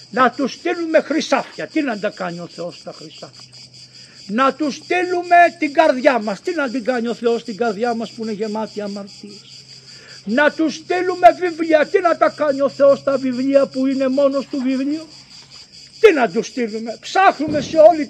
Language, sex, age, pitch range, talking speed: Greek, male, 50-69, 230-315 Hz, 180 wpm